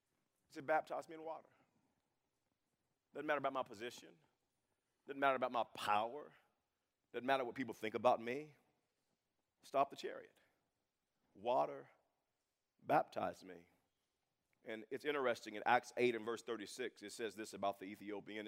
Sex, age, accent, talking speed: male, 40-59, American, 140 wpm